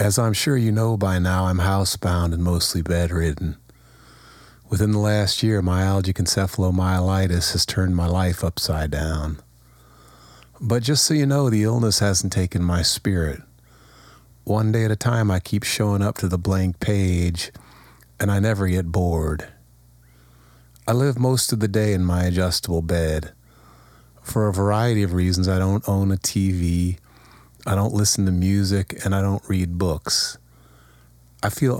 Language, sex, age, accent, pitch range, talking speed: English, male, 30-49, American, 80-105 Hz, 160 wpm